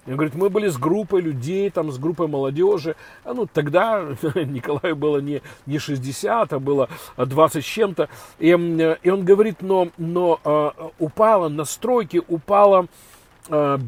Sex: male